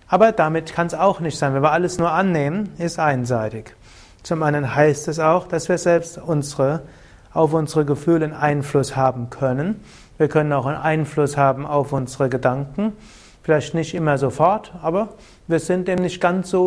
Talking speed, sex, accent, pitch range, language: 180 wpm, male, German, 135-180 Hz, German